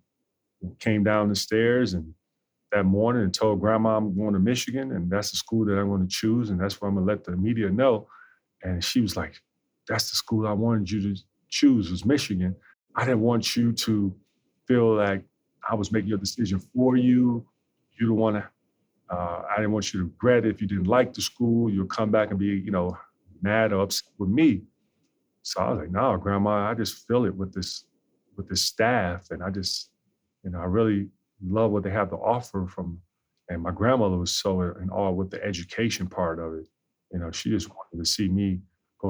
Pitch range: 95-110 Hz